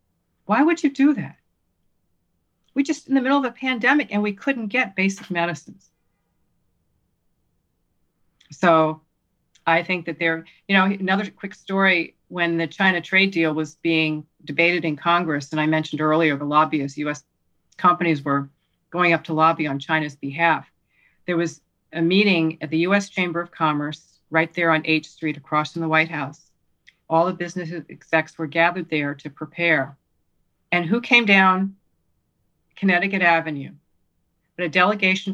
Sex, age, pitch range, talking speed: female, 40-59, 150-185 Hz, 160 wpm